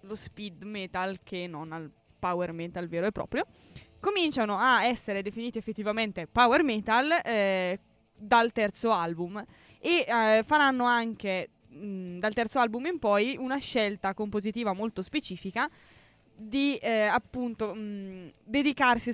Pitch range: 195-245 Hz